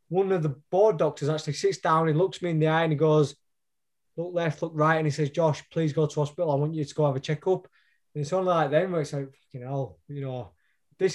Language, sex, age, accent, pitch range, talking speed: English, male, 20-39, British, 155-195 Hz, 270 wpm